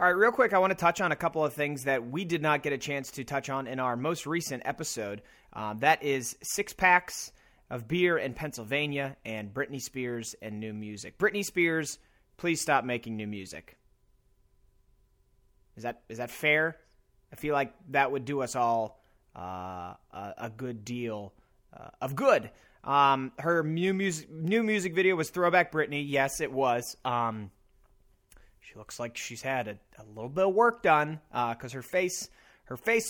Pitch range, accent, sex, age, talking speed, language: 115-155 Hz, American, male, 30-49, 185 wpm, English